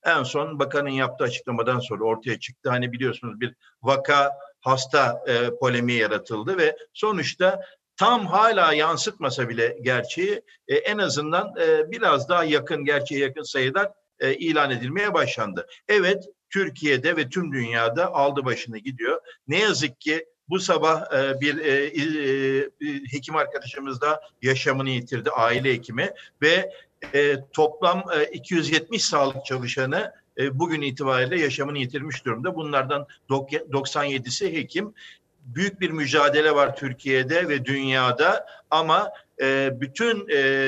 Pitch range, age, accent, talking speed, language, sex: 130-170 Hz, 60-79, native, 120 wpm, Turkish, male